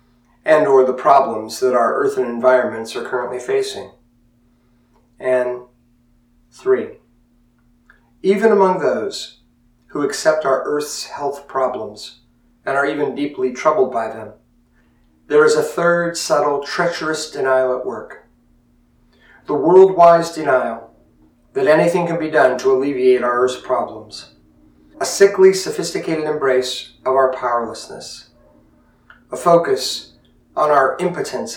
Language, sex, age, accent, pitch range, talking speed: English, male, 40-59, American, 120-165 Hz, 120 wpm